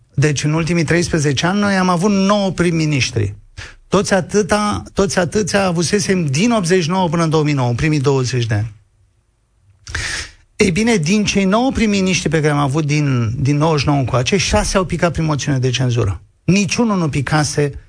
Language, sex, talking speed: Romanian, male, 160 wpm